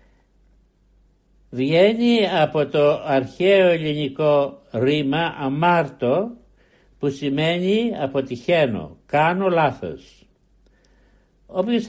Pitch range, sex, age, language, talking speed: 135-175 Hz, male, 60-79, Greek, 65 wpm